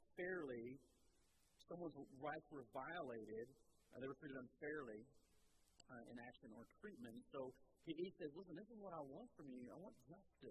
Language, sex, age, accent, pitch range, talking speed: English, male, 50-69, American, 120-160 Hz, 165 wpm